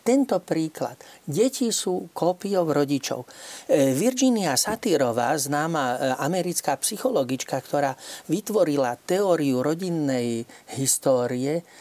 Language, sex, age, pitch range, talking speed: Slovak, male, 40-59, 135-195 Hz, 80 wpm